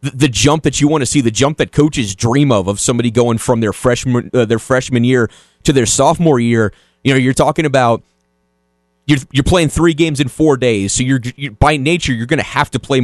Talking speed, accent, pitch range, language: 235 wpm, American, 115-150 Hz, English